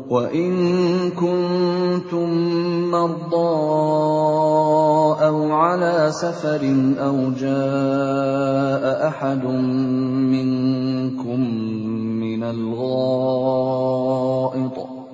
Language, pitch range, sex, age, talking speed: Indonesian, 135-175 Hz, male, 30-49, 50 wpm